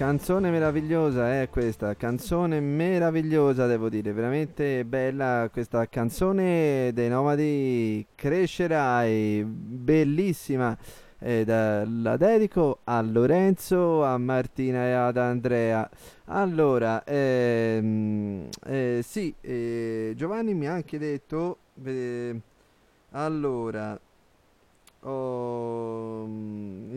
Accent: native